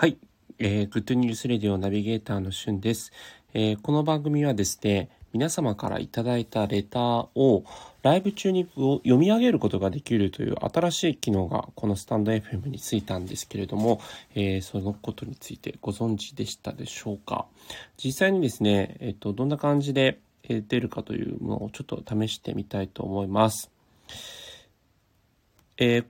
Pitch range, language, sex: 105-130 Hz, Japanese, male